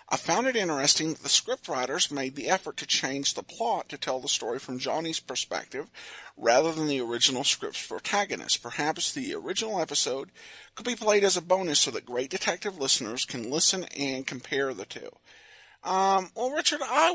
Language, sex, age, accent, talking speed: English, male, 50-69, American, 185 wpm